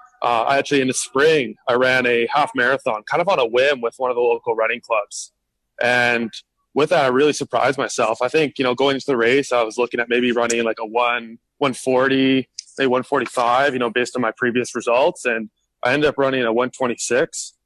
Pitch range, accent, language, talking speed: 120-135 Hz, American, English, 220 wpm